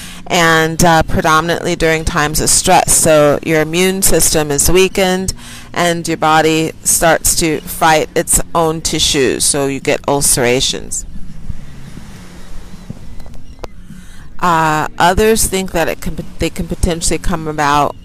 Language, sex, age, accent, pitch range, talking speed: English, female, 40-59, American, 150-180 Hz, 125 wpm